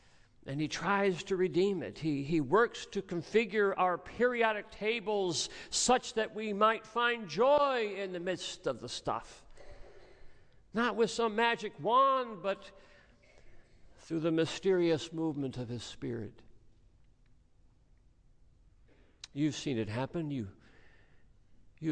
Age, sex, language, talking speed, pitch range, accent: 60-79, male, English, 125 wpm, 115-165 Hz, American